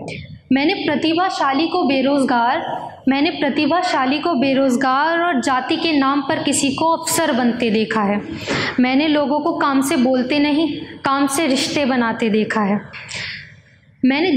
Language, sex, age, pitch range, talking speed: Hindi, female, 20-39, 255-310 Hz, 140 wpm